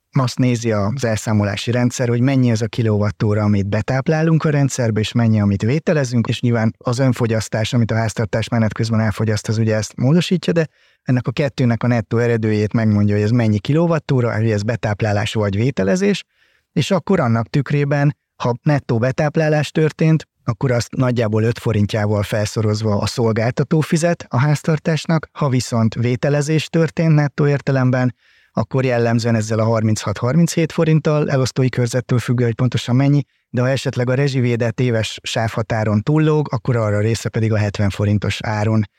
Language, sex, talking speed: Hungarian, male, 155 wpm